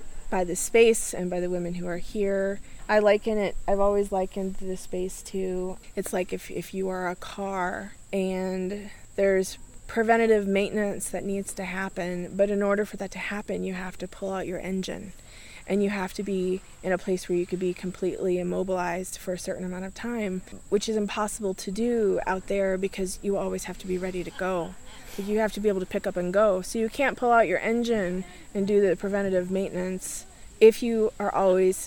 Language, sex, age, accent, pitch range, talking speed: English, female, 20-39, American, 185-200 Hz, 210 wpm